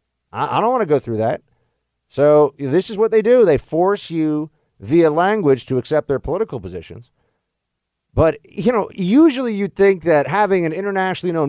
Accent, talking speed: American, 180 wpm